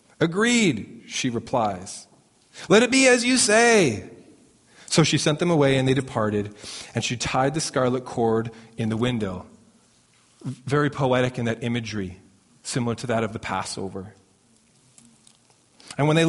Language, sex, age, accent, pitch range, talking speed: English, male, 30-49, American, 115-155 Hz, 145 wpm